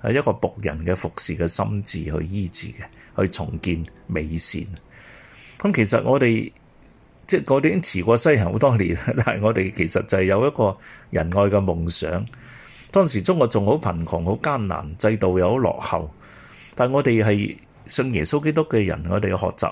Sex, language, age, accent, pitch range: male, Chinese, 30-49, native, 85-120 Hz